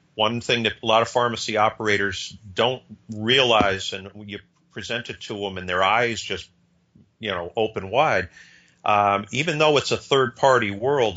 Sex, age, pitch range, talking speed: male, 50-69, 100-120 Hz, 165 wpm